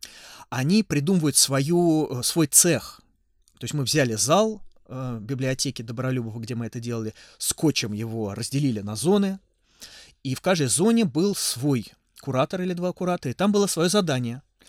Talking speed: 145 wpm